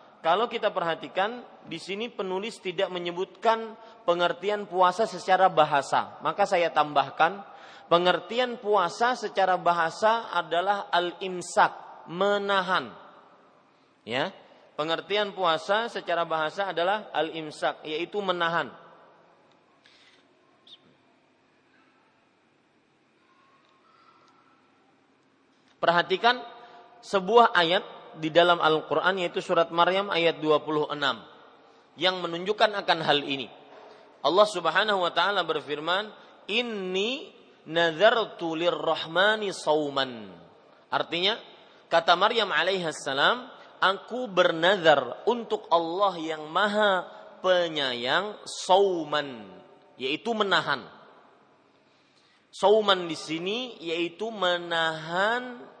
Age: 40-59